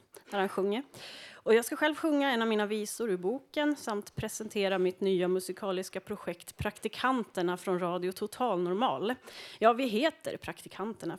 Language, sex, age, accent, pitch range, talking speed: Swedish, female, 30-49, native, 185-240 Hz, 155 wpm